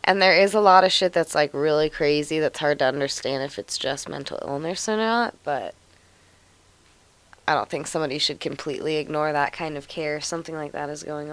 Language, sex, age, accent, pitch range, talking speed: English, female, 20-39, American, 155-190 Hz, 205 wpm